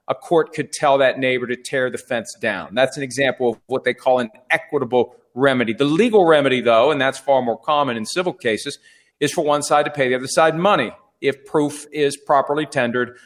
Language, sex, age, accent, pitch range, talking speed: English, male, 40-59, American, 135-160 Hz, 215 wpm